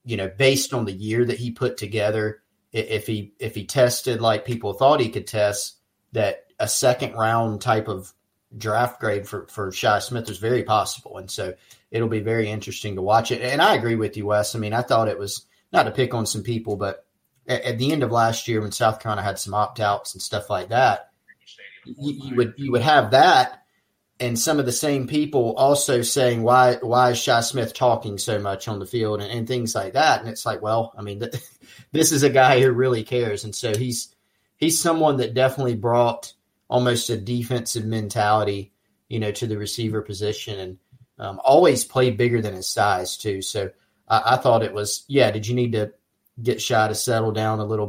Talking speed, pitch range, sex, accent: 215 wpm, 105-125 Hz, male, American